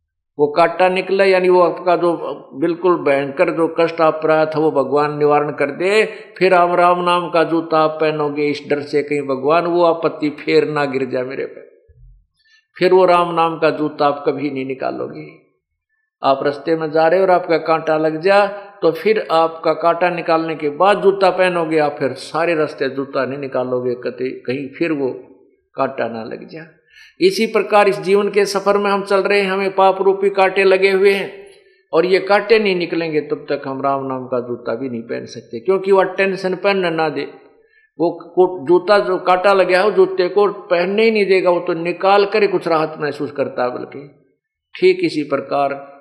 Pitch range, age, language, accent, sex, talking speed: 145-195 Hz, 50-69, Hindi, native, male, 195 wpm